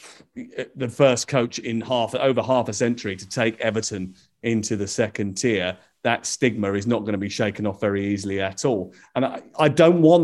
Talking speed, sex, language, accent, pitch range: 200 wpm, male, English, British, 105-150 Hz